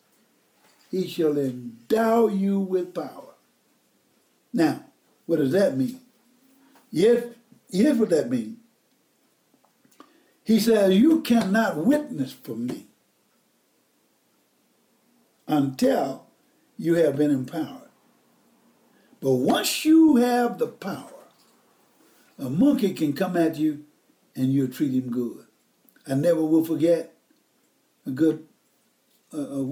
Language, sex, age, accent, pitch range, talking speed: English, male, 60-79, American, 150-200 Hz, 105 wpm